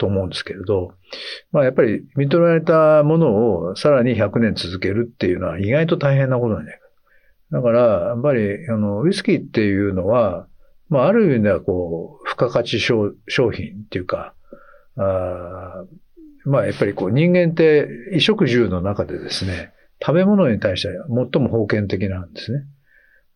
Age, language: 50-69, Japanese